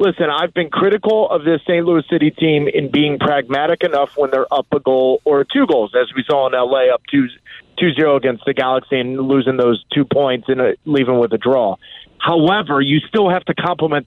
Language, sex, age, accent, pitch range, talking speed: English, male, 30-49, American, 140-180 Hz, 215 wpm